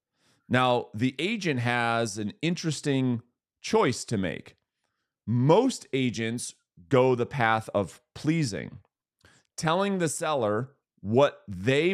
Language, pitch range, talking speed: English, 115-160 Hz, 105 wpm